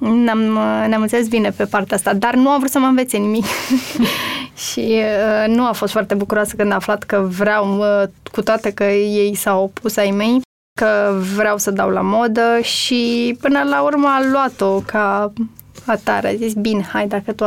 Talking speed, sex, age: 190 wpm, female, 20-39